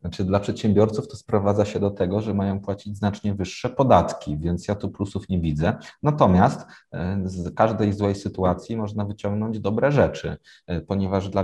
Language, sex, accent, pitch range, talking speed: Polish, male, native, 85-100 Hz, 155 wpm